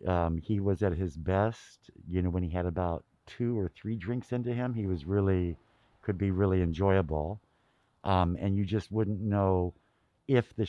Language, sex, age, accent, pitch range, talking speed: English, male, 50-69, American, 85-105 Hz, 185 wpm